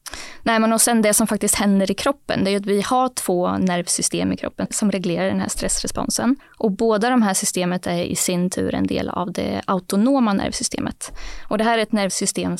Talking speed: 215 wpm